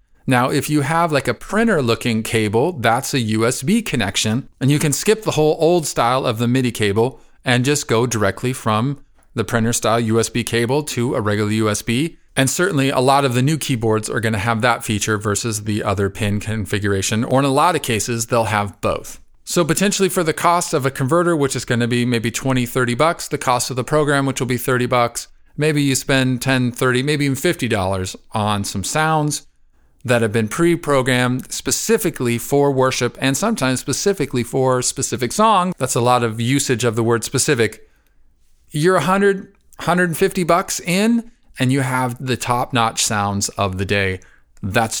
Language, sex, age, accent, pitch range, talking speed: English, male, 40-59, American, 115-145 Hz, 185 wpm